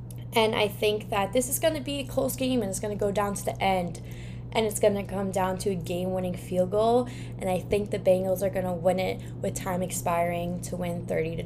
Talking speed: 235 wpm